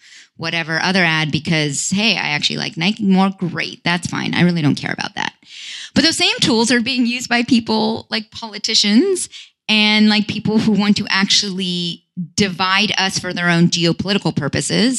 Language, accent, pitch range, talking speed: English, American, 175-235 Hz, 175 wpm